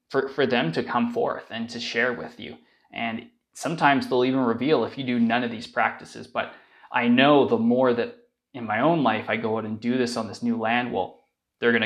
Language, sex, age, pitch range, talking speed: English, male, 20-39, 115-135 Hz, 235 wpm